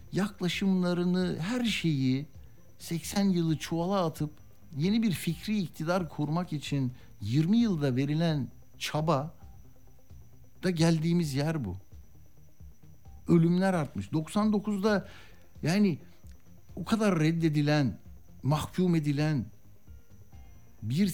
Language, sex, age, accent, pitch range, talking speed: Turkish, male, 60-79, native, 120-175 Hz, 90 wpm